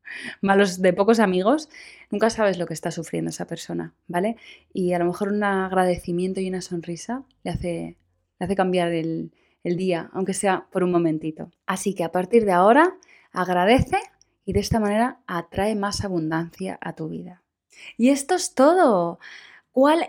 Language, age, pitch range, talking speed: Spanish, 20-39, 185-260 Hz, 170 wpm